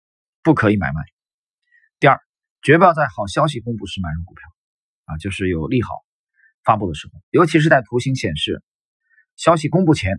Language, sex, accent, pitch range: Chinese, male, native, 100-165 Hz